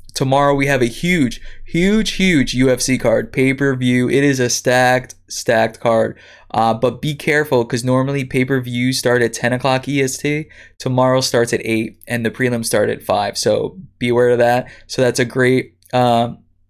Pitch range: 120-140 Hz